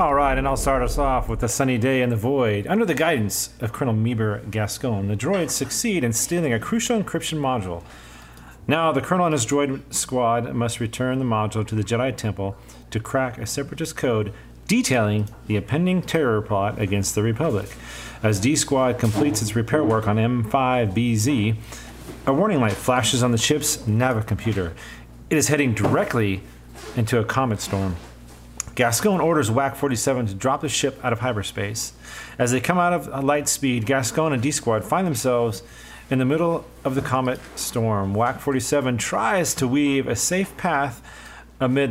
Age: 40-59